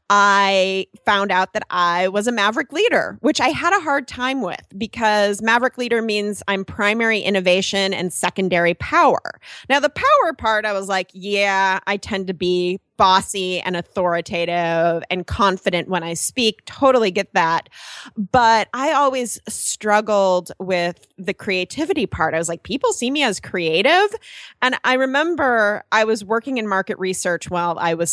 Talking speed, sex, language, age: 165 wpm, female, English, 20-39